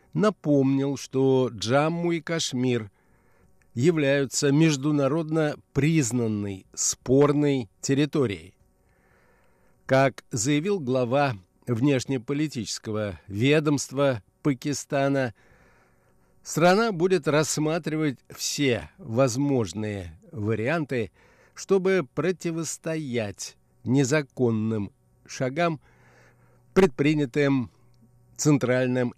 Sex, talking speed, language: male, 60 wpm, Russian